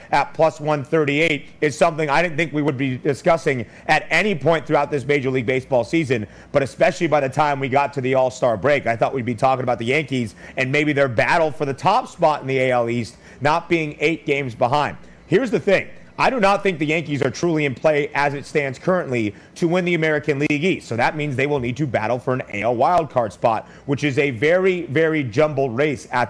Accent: American